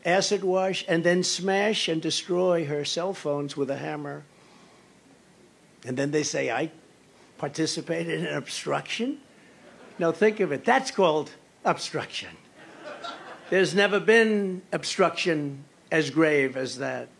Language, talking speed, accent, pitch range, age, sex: English, 125 wpm, American, 165-210 Hz, 60-79, male